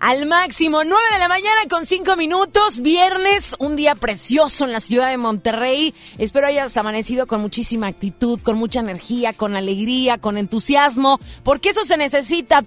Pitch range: 205-275 Hz